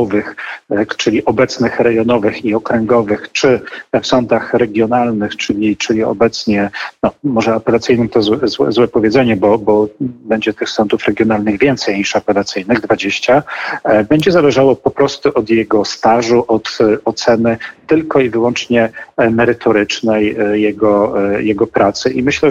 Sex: male